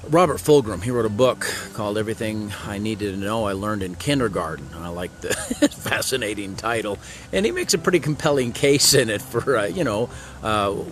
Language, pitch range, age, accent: English, 100-130 Hz, 40-59, American